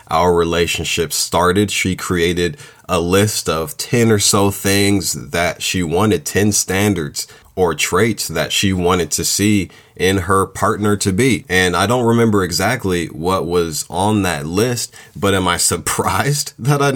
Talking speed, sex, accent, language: 160 wpm, male, American, English